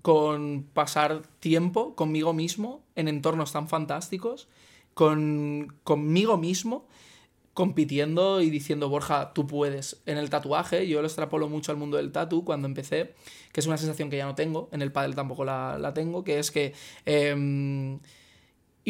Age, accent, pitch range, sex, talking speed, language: 20-39, Spanish, 150-170 Hz, male, 155 wpm, Spanish